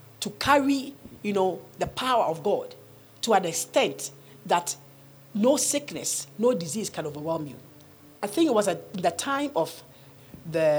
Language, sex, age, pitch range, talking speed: English, female, 50-69, 150-230 Hz, 145 wpm